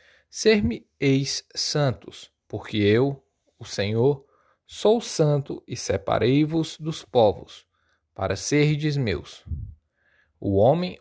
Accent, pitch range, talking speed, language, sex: Brazilian, 95-140 Hz, 105 wpm, Portuguese, male